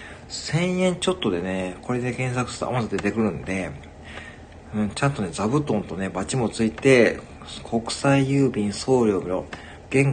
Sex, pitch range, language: male, 80-120 Hz, Japanese